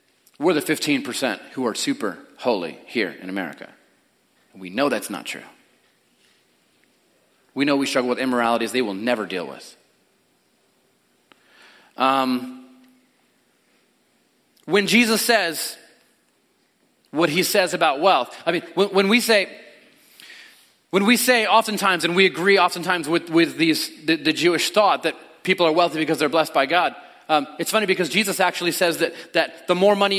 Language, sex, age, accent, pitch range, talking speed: English, male, 30-49, American, 165-235 Hz, 155 wpm